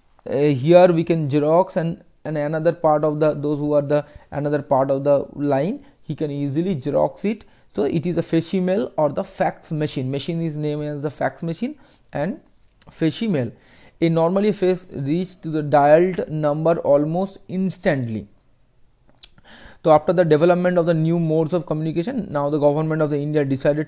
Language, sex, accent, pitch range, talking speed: English, male, Indian, 145-170 Hz, 180 wpm